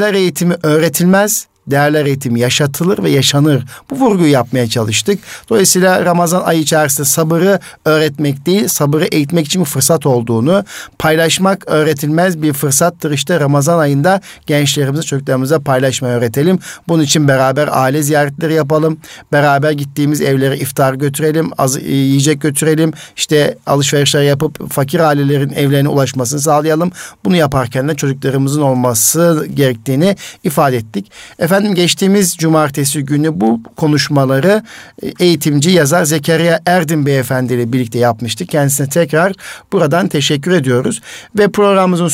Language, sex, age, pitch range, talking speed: Turkish, male, 50-69, 140-175 Hz, 120 wpm